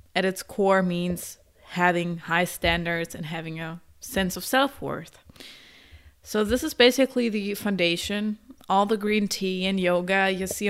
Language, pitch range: English, 165-205 Hz